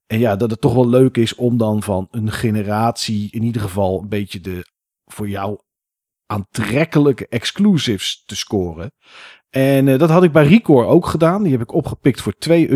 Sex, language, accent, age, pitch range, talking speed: male, Dutch, Dutch, 40-59, 105-145 Hz, 190 wpm